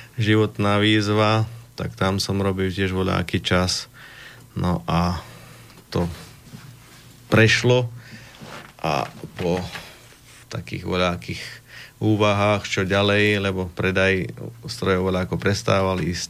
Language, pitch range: Slovak, 90-110 Hz